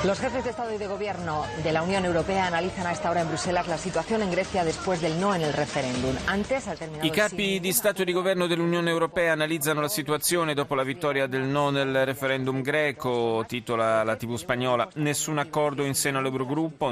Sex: male